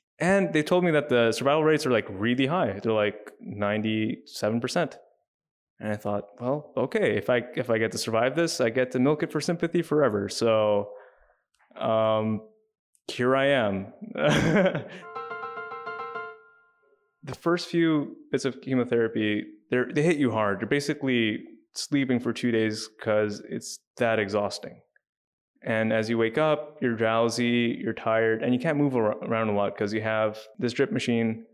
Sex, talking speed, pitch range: male, 160 wpm, 110-150 Hz